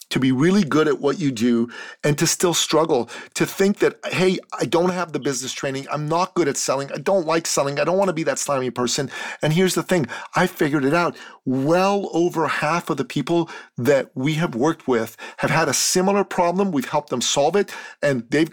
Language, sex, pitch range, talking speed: English, male, 135-180 Hz, 225 wpm